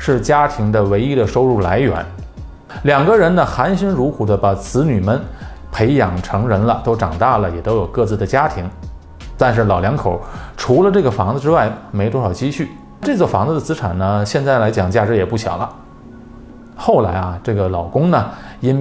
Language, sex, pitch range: Chinese, male, 95-130 Hz